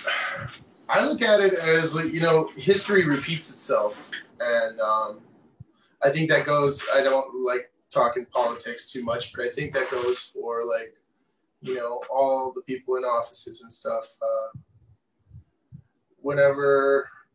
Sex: male